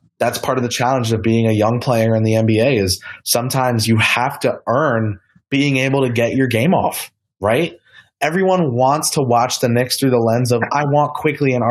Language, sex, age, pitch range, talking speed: English, male, 20-39, 115-140 Hz, 210 wpm